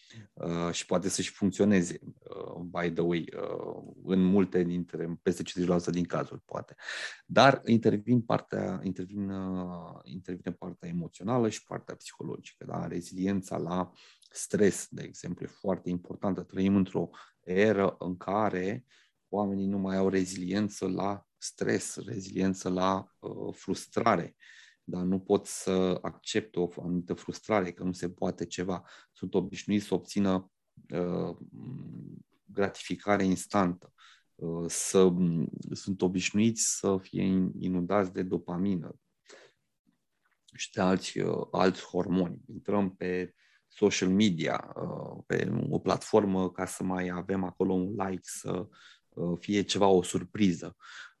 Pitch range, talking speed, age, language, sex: 90-100 Hz, 130 wpm, 30-49, Romanian, male